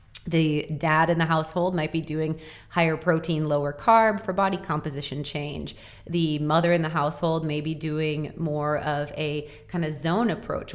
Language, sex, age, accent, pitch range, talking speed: English, female, 30-49, American, 150-170 Hz, 175 wpm